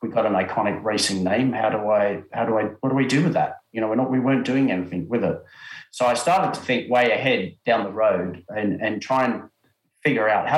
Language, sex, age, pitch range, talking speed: English, male, 40-59, 95-125 Hz, 255 wpm